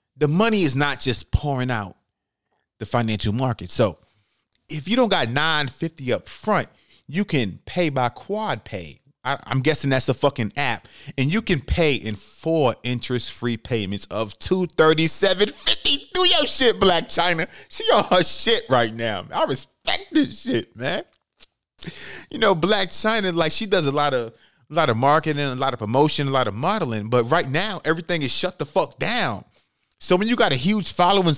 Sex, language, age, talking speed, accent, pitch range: male, English, 30-49, 180 wpm, American, 130-185 Hz